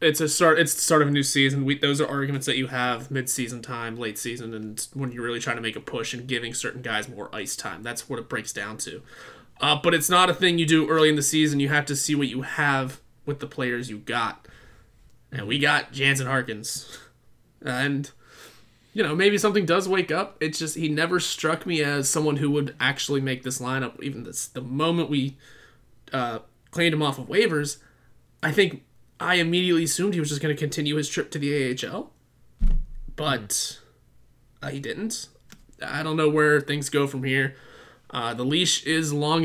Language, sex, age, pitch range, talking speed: English, male, 20-39, 130-155 Hz, 210 wpm